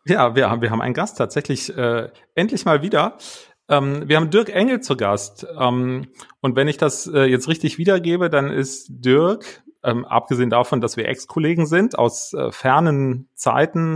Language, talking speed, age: German, 180 wpm, 30-49